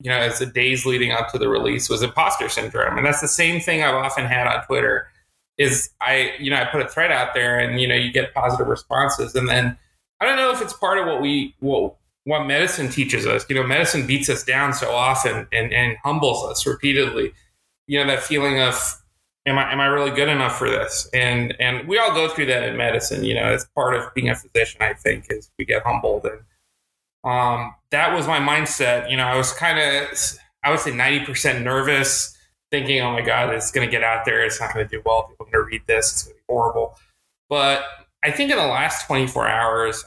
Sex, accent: male, American